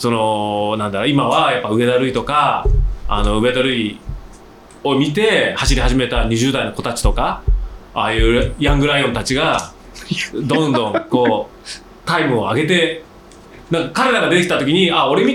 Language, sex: Japanese, male